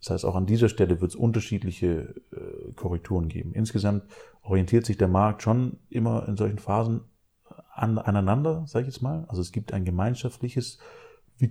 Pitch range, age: 95-115 Hz, 30-49